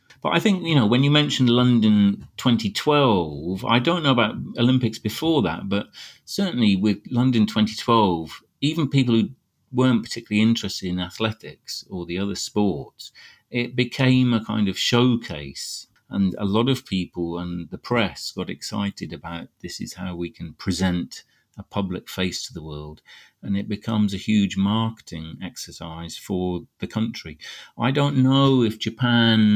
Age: 40-59